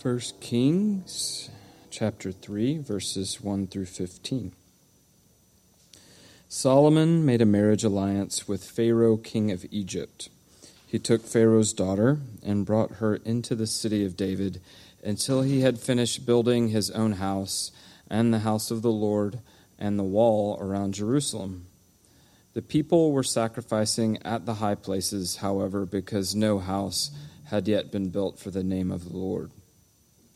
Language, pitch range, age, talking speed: English, 95-115 Hz, 40-59, 140 wpm